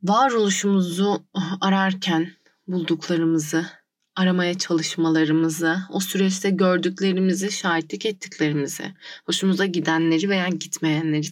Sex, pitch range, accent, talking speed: female, 160-195 Hz, native, 75 wpm